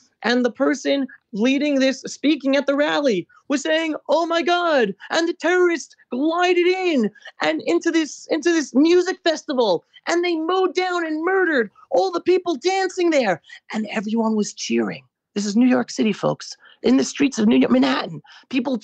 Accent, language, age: American, English, 30-49